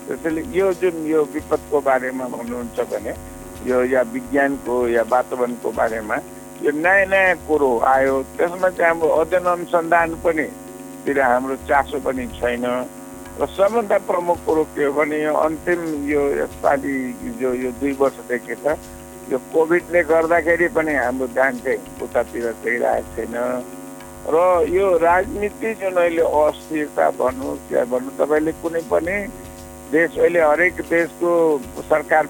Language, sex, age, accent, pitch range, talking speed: English, male, 60-79, Indian, 135-170 Hz, 95 wpm